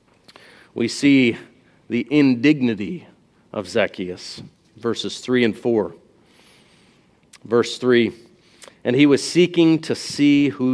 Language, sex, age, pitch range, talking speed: English, male, 40-59, 115-145 Hz, 105 wpm